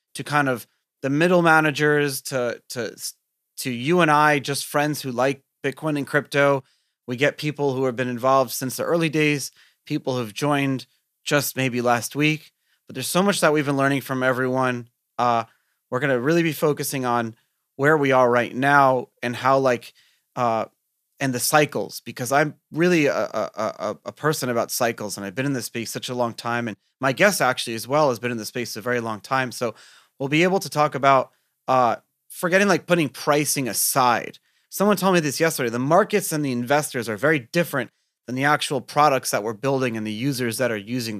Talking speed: 200 wpm